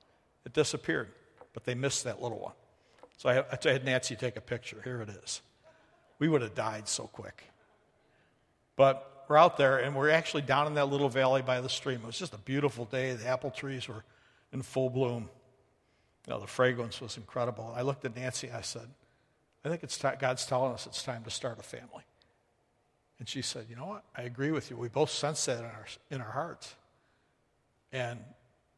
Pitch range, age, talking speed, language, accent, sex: 120-145 Hz, 60-79, 205 wpm, English, American, male